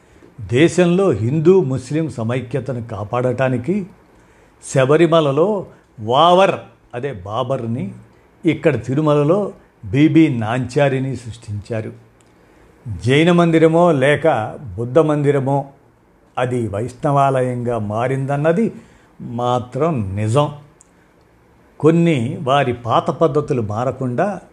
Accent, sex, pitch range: native, male, 115-160 Hz